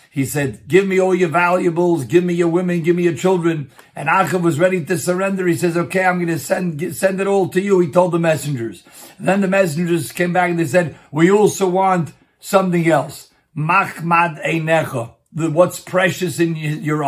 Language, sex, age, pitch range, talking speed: English, male, 50-69, 150-180 Hz, 190 wpm